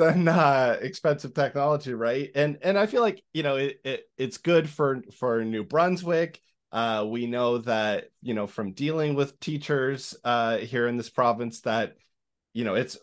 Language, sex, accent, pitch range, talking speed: English, male, American, 100-130 Hz, 180 wpm